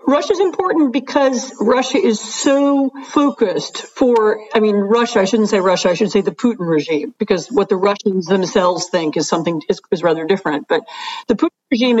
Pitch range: 180-220 Hz